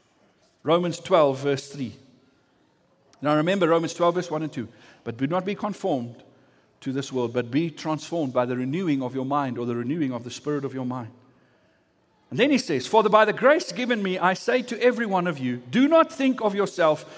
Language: English